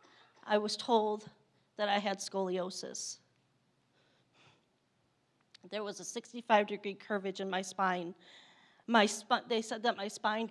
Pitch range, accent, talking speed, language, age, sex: 200-245 Hz, American, 130 wpm, English, 40-59, female